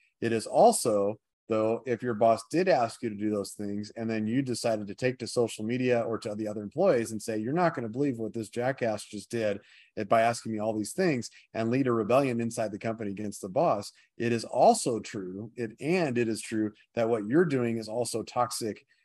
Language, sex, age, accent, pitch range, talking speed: English, male, 30-49, American, 105-125 Hz, 225 wpm